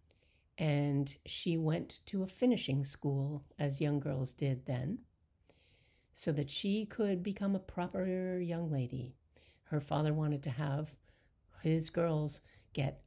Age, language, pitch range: 60-79, English, 140-180 Hz